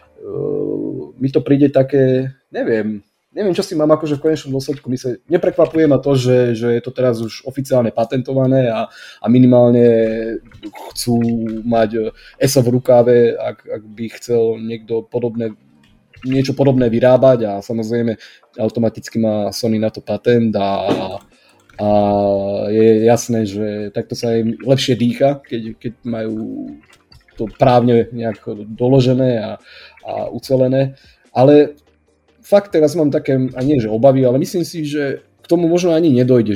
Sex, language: male, Slovak